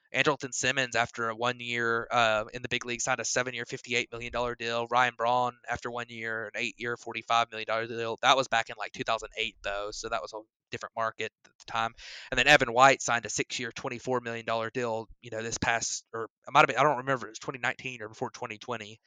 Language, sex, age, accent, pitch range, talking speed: English, male, 20-39, American, 115-135 Hz, 215 wpm